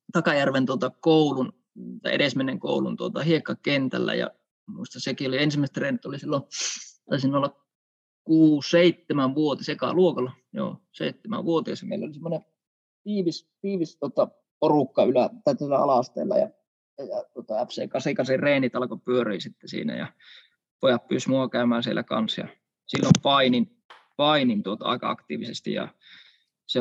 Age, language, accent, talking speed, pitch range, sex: 20-39, Finnish, native, 135 wpm, 125-170 Hz, male